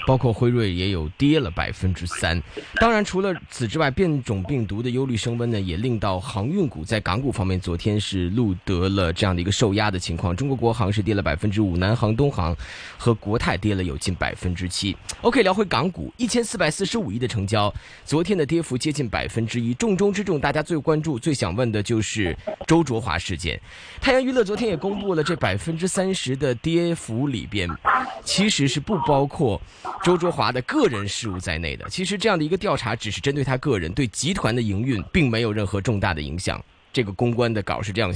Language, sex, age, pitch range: Chinese, male, 20-39, 95-145 Hz